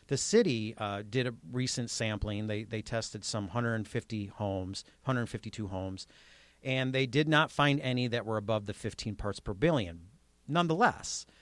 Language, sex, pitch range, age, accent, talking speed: English, male, 100-135 Hz, 40-59, American, 160 wpm